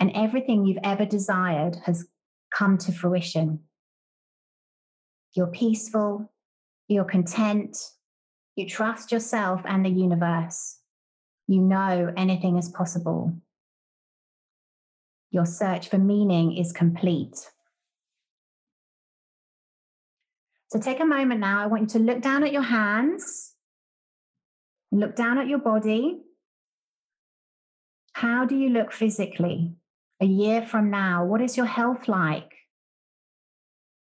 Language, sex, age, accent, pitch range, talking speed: English, female, 30-49, British, 185-230 Hz, 110 wpm